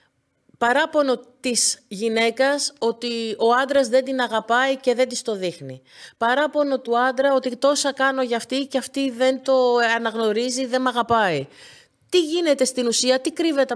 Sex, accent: female, native